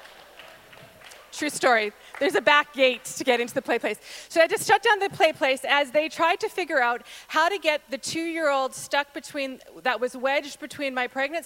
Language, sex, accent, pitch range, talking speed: English, female, American, 250-310 Hz, 205 wpm